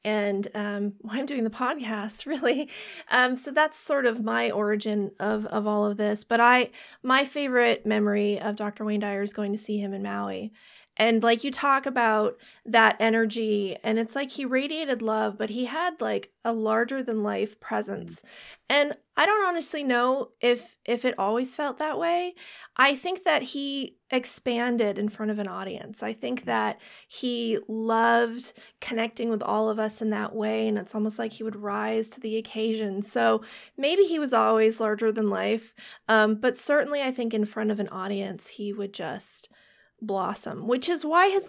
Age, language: 30-49, English